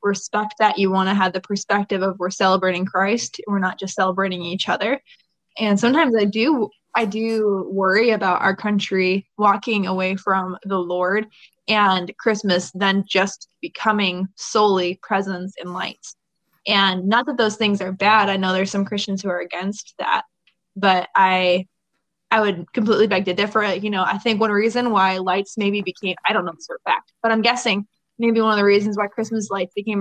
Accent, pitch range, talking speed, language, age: American, 185-215 Hz, 190 wpm, English, 20-39